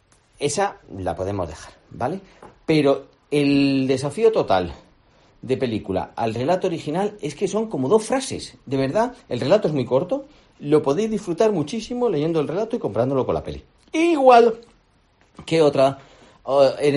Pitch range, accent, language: 125-175 Hz, Spanish, Spanish